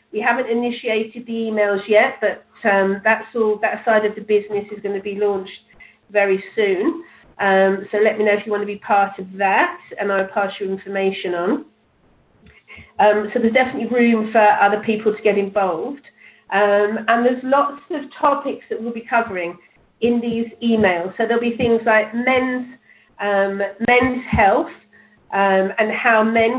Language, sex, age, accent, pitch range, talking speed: English, female, 40-59, British, 210-260 Hz, 175 wpm